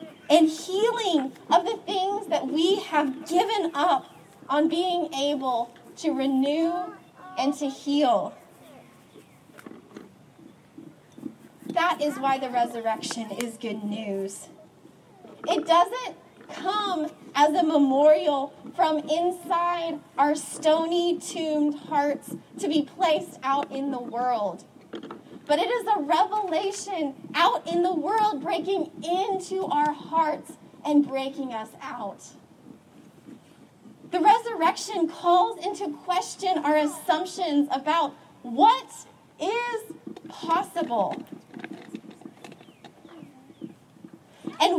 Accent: American